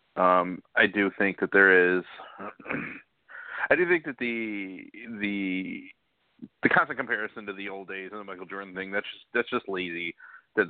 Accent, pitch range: American, 95-105 Hz